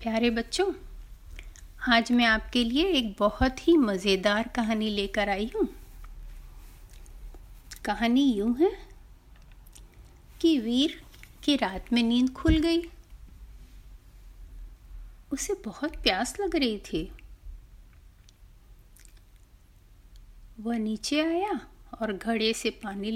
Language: Hindi